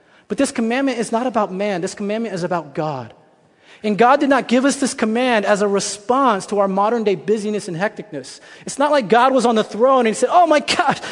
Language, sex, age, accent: English, male, 30-49, American